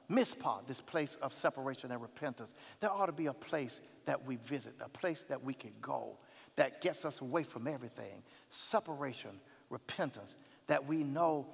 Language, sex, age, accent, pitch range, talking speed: English, male, 50-69, American, 200-305 Hz, 165 wpm